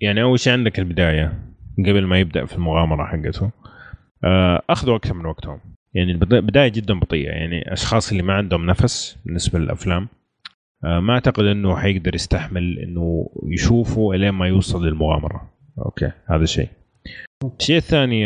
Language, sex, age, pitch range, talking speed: Arabic, male, 30-49, 90-115 Hz, 145 wpm